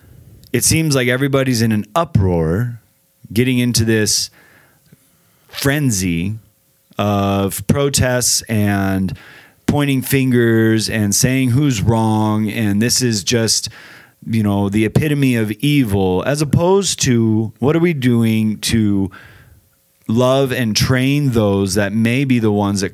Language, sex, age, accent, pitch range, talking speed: English, male, 30-49, American, 100-130 Hz, 125 wpm